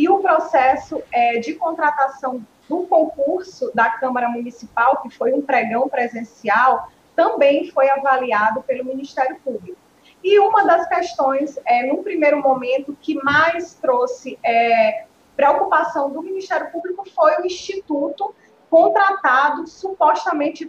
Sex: female